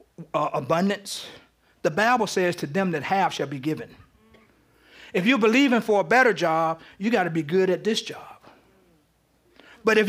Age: 40-59